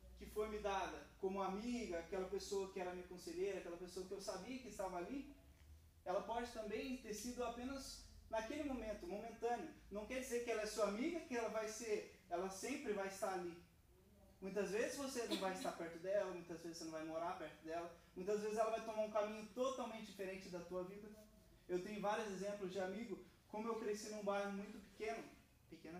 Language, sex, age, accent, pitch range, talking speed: Portuguese, male, 20-39, Brazilian, 185-225 Hz, 205 wpm